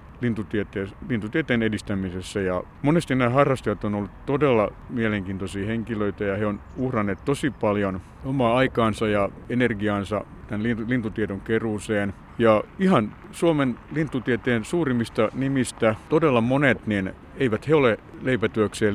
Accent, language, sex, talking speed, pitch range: native, Finnish, male, 115 wpm, 100-120 Hz